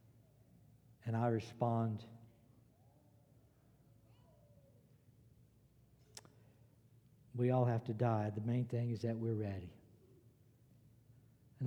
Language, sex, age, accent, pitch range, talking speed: English, male, 60-79, American, 120-145 Hz, 80 wpm